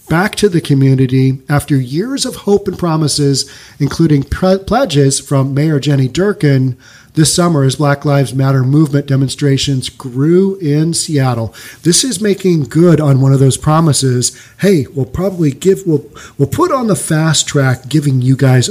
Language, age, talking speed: English, 40-59, 165 wpm